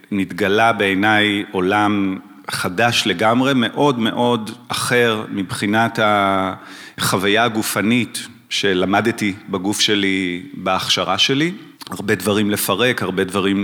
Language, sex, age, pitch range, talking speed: Hebrew, male, 40-59, 100-120 Hz, 90 wpm